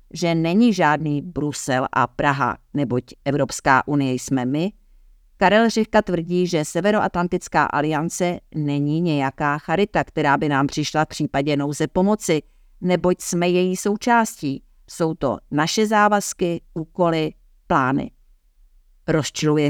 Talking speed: 120 wpm